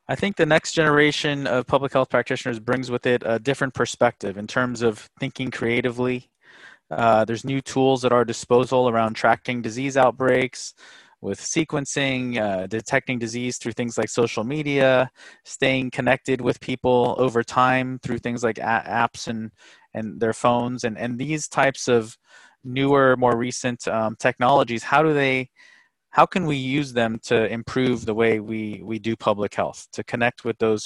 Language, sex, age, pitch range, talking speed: English, male, 20-39, 115-130 Hz, 165 wpm